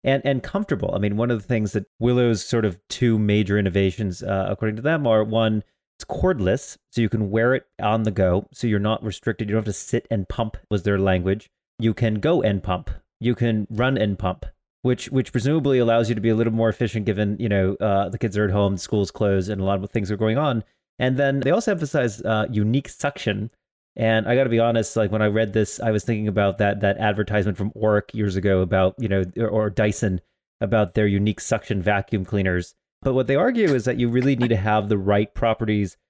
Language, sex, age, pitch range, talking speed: English, male, 30-49, 100-120 Hz, 235 wpm